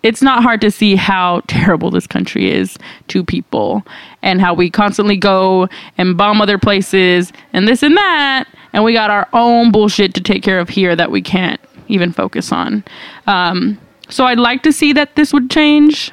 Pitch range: 195-245 Hz